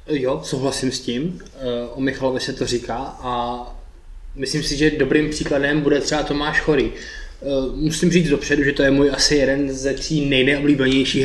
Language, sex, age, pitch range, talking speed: Czech, male, 20-39, 125-145 Hz, 165 wpm